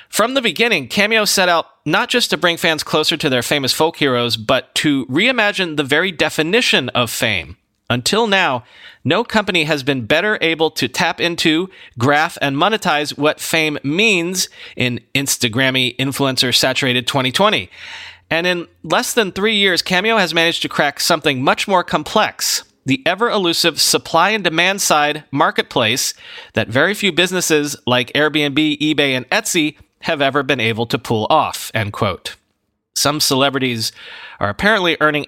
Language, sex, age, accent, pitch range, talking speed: English, male, 30-49, American, 130-185 Hz, 150 wpm